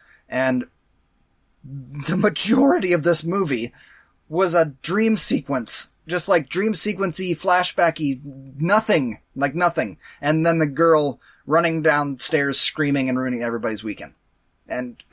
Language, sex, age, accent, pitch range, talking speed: English, male, 30-49, American, 140-180 Hz, 120 wpm